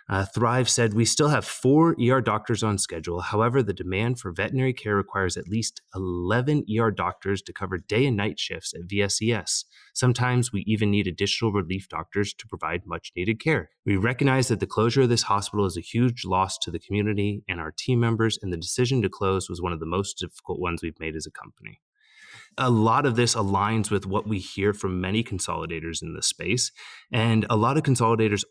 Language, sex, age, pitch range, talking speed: English, male, 30-49, 90-115 Hz, 210 wpm